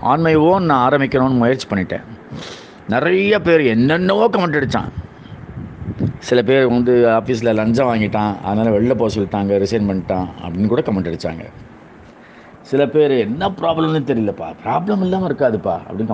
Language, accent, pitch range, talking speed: Tamil, native, 105-145 Hz, 130 wpm